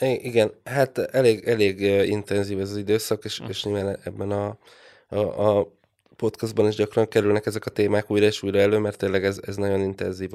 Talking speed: 185 wpm